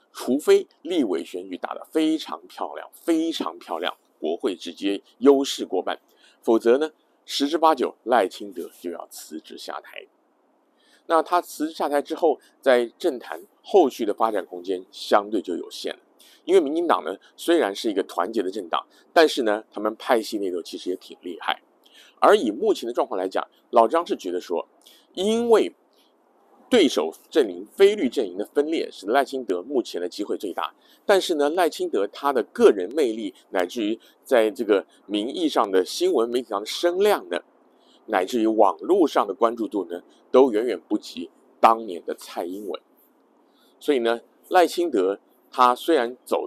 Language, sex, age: Chinese, male, 50-69